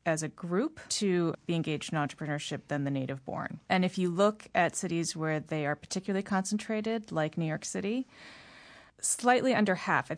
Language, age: English, 30-49